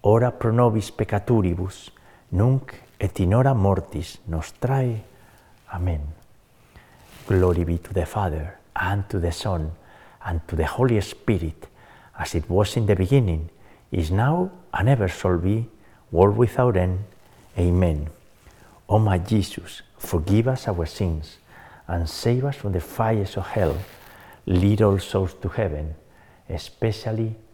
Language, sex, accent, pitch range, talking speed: English, male, Spanish, 90-125 Hz, 140 wpm